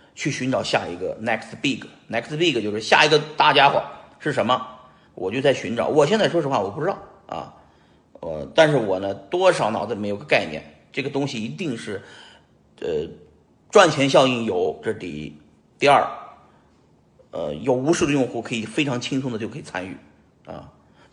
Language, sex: Chinese, male